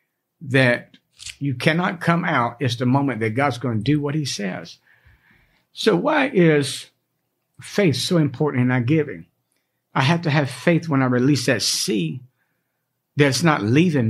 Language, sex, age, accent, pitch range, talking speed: English, male, 60-79, American, 130-165 Hz, 160 wpm